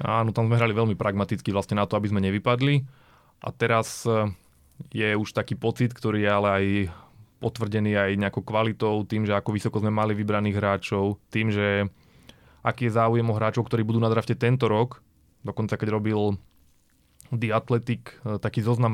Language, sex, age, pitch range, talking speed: Slovak, male, 20-39, 105-125 Hz, 170 wpm